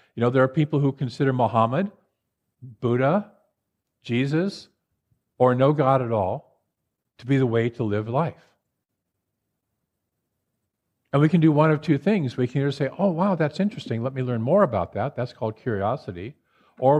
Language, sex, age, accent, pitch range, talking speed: English, male, 50-69, American, 110-145 Hz, 170 wpm